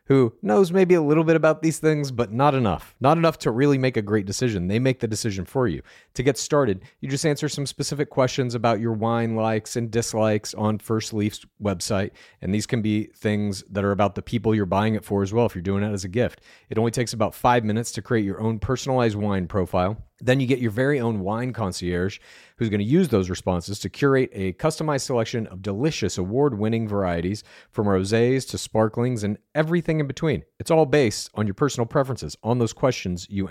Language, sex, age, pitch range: English, male, 40-59, 105-135 Hz